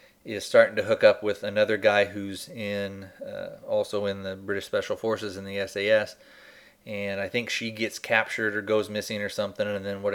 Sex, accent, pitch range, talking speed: male, American, 105-155 Hz, 200 wpm